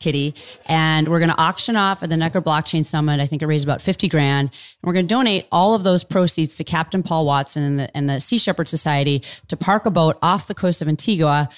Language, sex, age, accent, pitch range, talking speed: English, female, 30-49, American, 150-180 Hz, 250 wpm